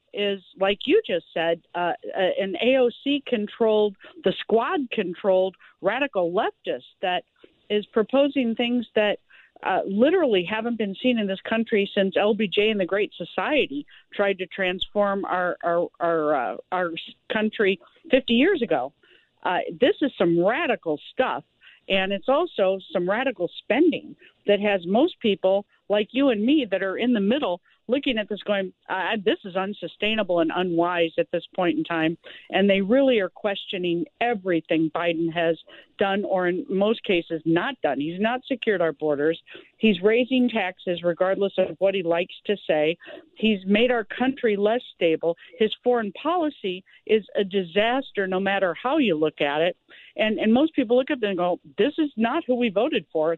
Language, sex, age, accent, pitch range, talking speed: English, female, 50-69, American, 180-240 Hz, 165 wpm